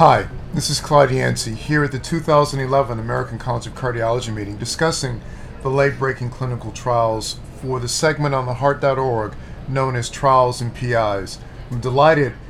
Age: 40-59